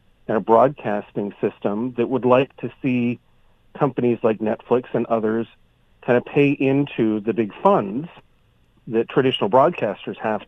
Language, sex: English, male